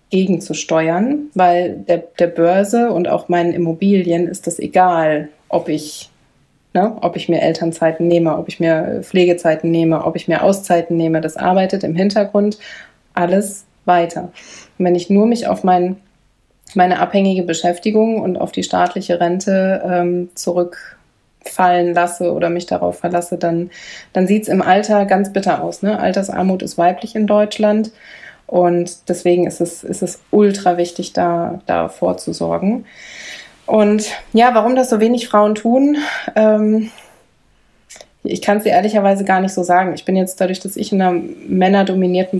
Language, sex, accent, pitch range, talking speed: German, female, German, 170-200 Hz, 155 wpm